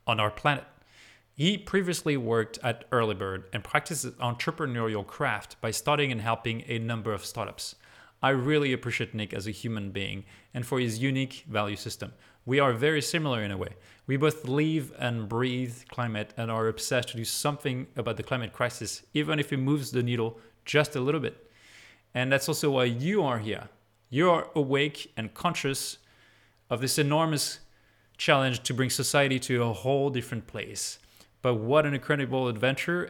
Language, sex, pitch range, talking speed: English, male, 115-145 Hz, 175 wpm